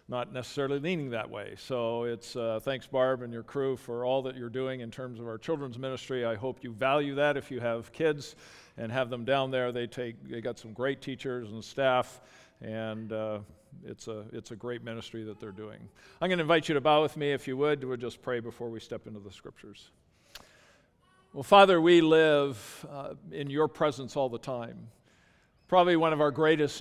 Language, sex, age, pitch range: English, male, 50-69, 120-150 Hz